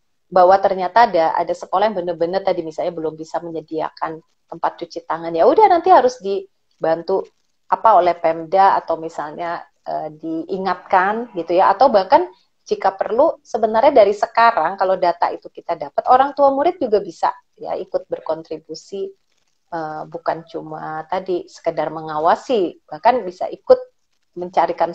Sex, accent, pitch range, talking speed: female, native, 165-205 Hz, 140 wpm